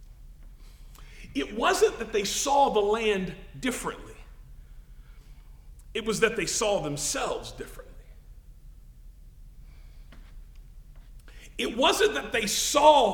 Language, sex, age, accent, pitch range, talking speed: English, male, 40-59, American, 195-285 Hz, 90 wpm